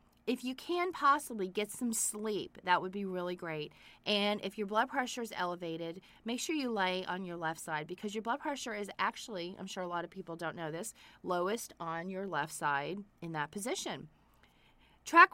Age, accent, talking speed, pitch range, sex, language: 30-49, American, 200 wpm, 185-230 Hz, female, English